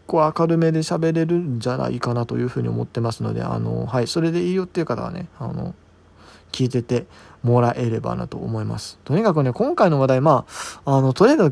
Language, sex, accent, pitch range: Japanese, male, native, 105-140 Hz